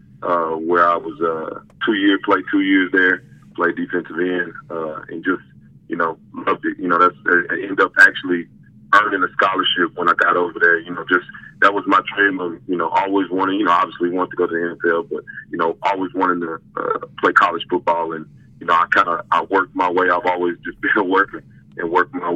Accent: American